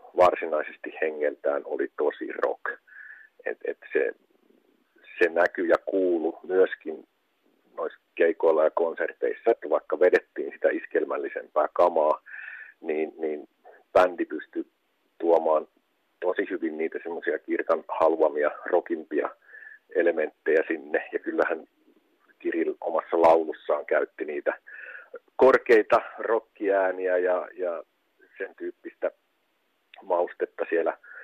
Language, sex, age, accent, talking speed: Finnish, male, 50-69, native, 100 wpm